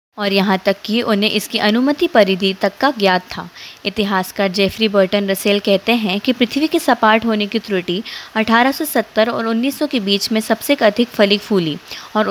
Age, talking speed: 20-39, 175 wpm